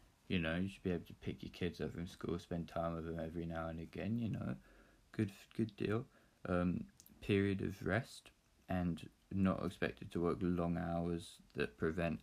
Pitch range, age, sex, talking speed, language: 80-95 Hz, 20-39, male, 190 wpm, English